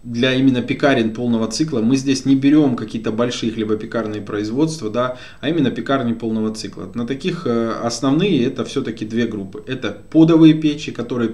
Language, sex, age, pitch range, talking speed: Russian, male, 20-39, 110-135 Hz, 160 wpm